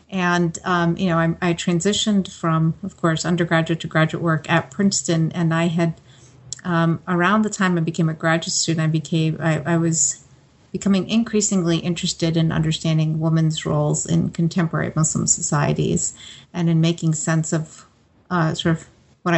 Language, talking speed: English, 165 wpm